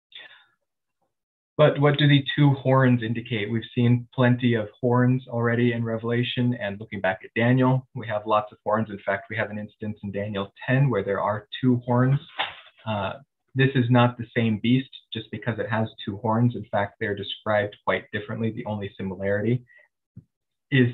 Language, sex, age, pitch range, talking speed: English, male, 20-39, 105-125 Hz, 180 wpm